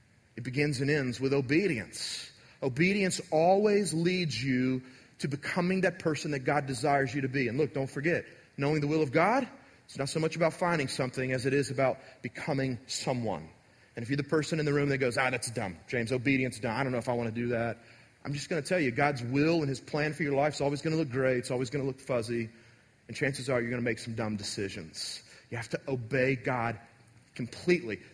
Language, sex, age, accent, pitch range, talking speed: English, male, 30-49, American, 125-170 Hz, 220 wpm